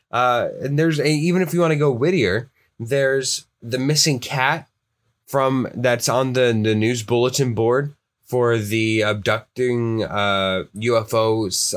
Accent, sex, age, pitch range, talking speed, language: American, male, 20-39, 115-150 Hz, 145 wpm, English